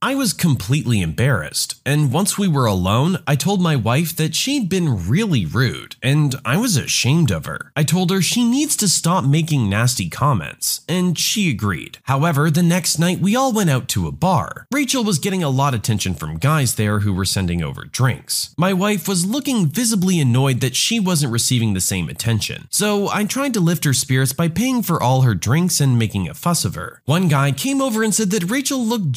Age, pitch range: 30-49, 120-185 Hz